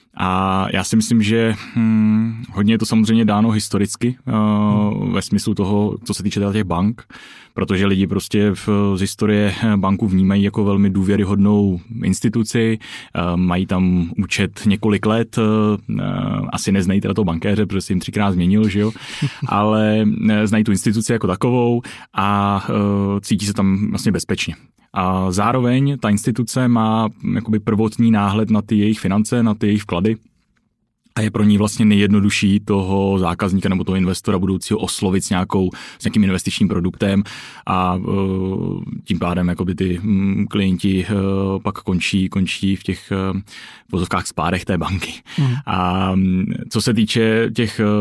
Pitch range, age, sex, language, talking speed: 95-110 Hz, 20-39, male, Czech, 140 wpm